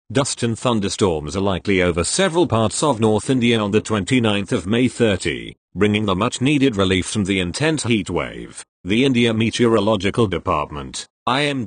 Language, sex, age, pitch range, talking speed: English, male, 40-59, 100-130 Hz, 145 wpm